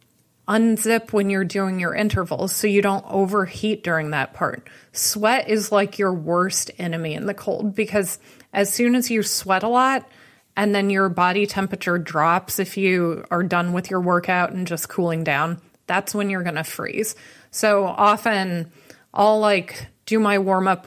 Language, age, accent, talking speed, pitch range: English, 20-39, American, 175 wpm, 175-205 Hz